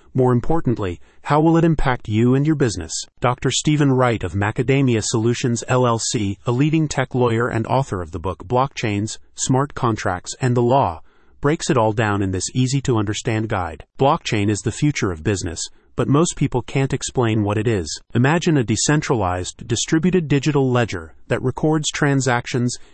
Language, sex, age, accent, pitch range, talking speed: English, male, 30-49, American, 105-135 Hz, 165 wpm